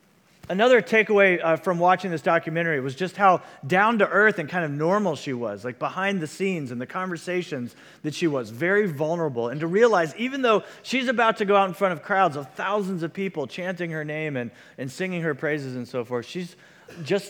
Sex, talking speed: male, 215 wpm